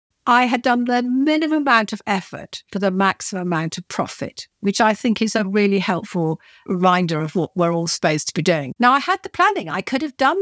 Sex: female